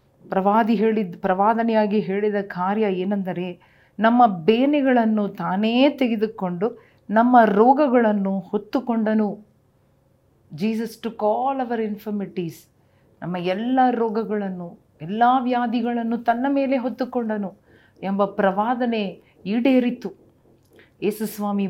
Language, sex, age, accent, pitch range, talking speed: Kannada, female, 40-59, native, 185-230 Hz, 85 wpm